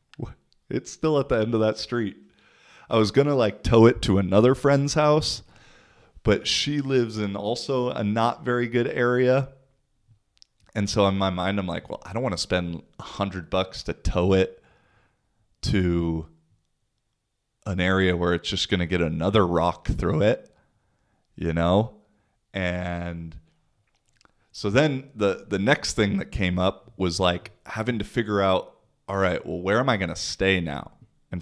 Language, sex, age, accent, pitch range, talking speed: English, male, 20-39, American, 90-115 Hz, 170 wpm